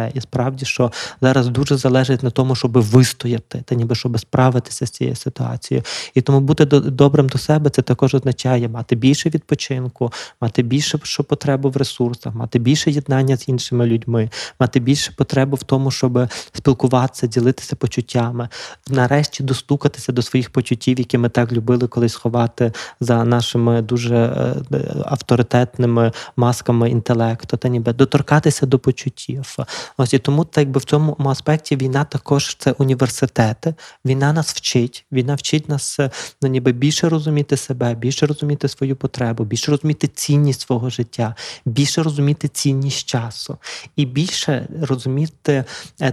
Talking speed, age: 145 wpm, 20-39